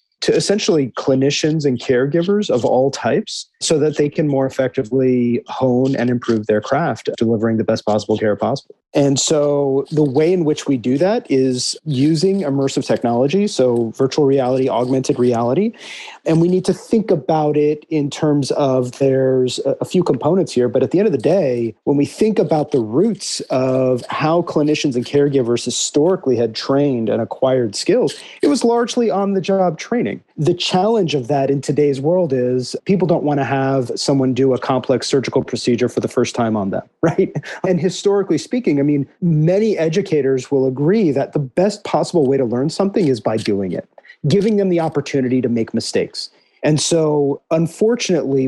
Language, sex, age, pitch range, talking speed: English, male, 30-49, 130-175 Hz, 180 wpm